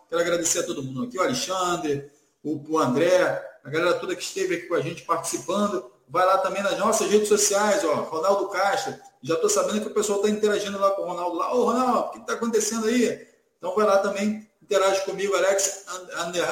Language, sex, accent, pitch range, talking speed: Portuguese, male, Brazilian, 180-225 Hz, 215 wpm